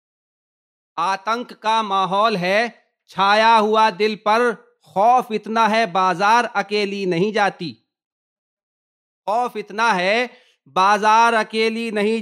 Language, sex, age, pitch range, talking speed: Urdu, male, 40-59, 190-230 Hz, 105 wpm